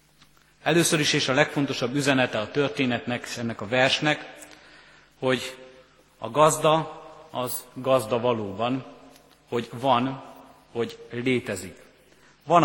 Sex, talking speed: male, 105 wpm